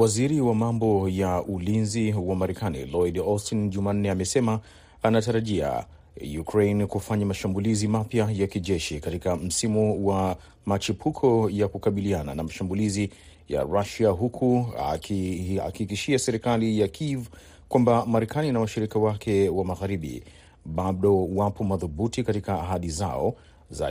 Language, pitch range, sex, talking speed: Swahili, 95-110 Hz, male, 120 wpm